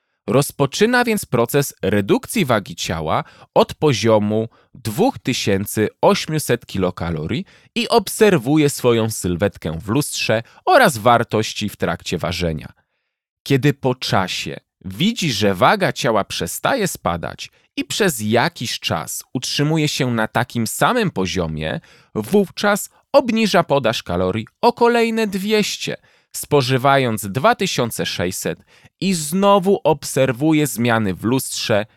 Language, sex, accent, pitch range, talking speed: Polish, male, native, 105-170 Hz, 105 wpm